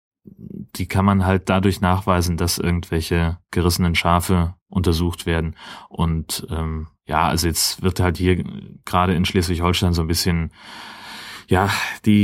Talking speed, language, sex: 135 wpm, German, male